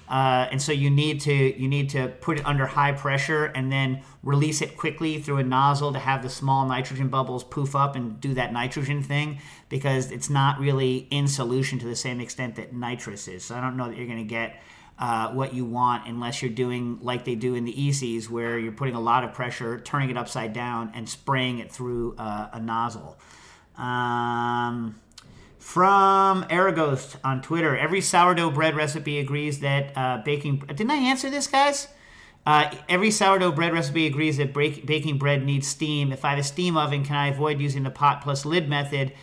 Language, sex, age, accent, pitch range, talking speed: English, male, 40-59, American, 125-145 Hz, 205 wpm